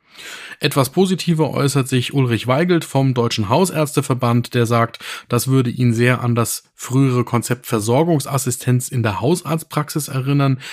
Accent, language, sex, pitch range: German, German, male, 115-145 Hz